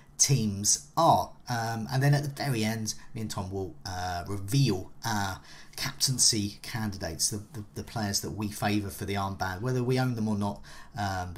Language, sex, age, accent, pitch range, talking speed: English, male, 40-59, British, 105-140 Hz, 185 wpm